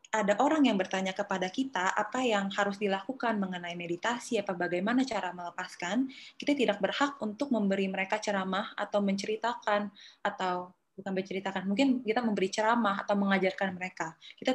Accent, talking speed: native, 150 wpm